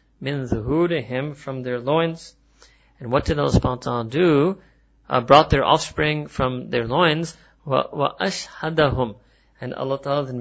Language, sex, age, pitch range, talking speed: English, male, 30-49, 130-160 Hz, 140 wpm